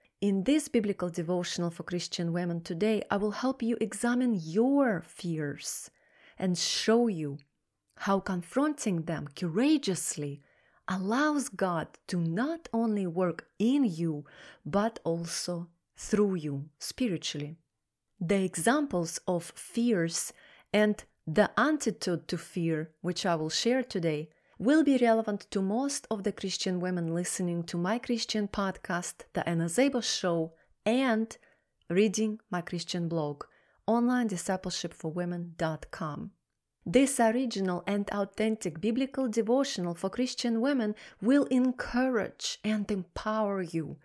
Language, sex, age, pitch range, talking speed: English, female, 30-49, 170-230 Hz, 120 wpm